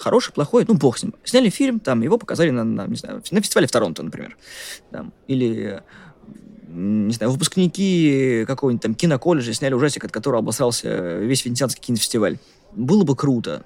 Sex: male